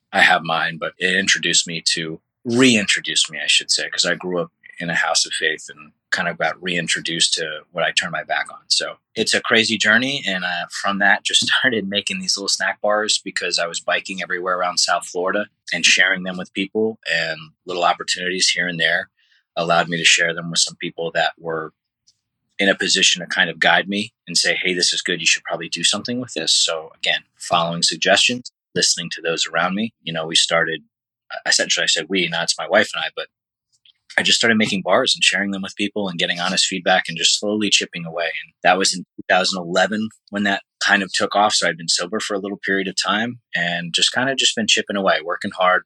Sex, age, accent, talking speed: male, 30-49, American, 225 wpm